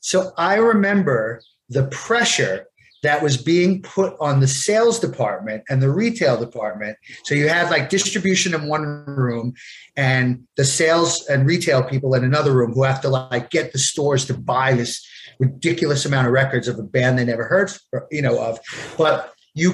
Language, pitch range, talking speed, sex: English, 130-190 Hz, 180 wpm, male